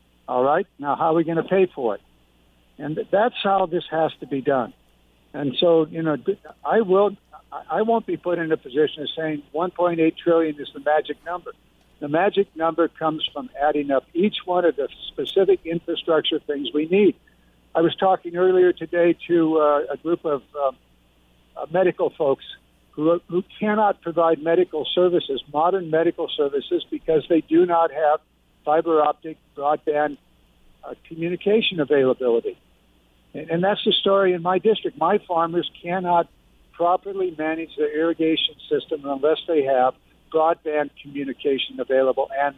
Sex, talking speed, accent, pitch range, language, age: male, 160 wpm, American, 140-180 Hz, English, 60-79